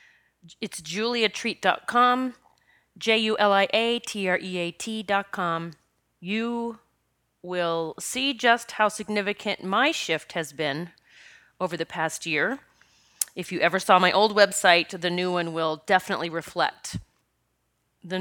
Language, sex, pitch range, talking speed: English, female, 160-210 Hz, 100 wpm